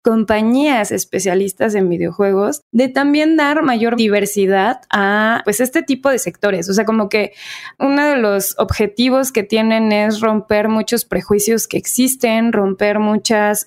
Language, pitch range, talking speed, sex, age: Spanish, 200-230 Hz, 145 wpm, female, 20-39